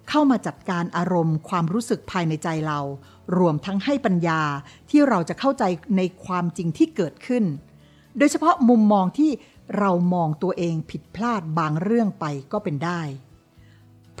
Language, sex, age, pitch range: Thai, female, 60-79, 165-230 Hz